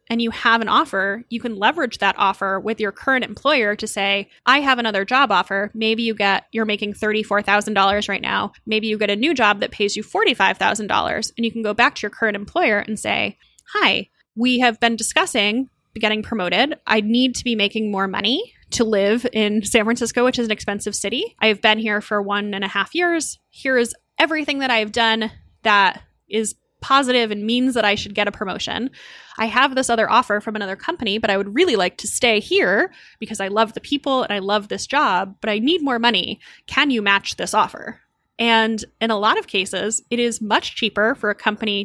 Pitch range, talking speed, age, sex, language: 205-245 Hz, 215 wpm, 10-29, female, English